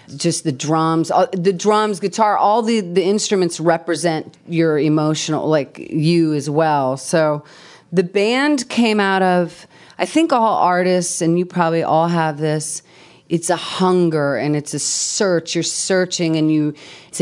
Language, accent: English, American